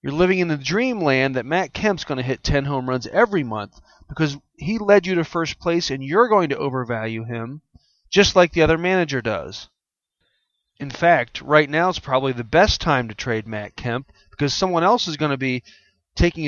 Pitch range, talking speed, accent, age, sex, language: 130-165 Hz, 205 wpm, American, 40-59, male, English